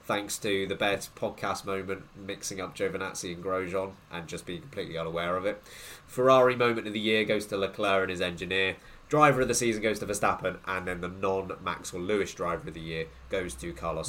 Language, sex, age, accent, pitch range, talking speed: English, male, 20-39, British, 85-120 Hz, 205 wpm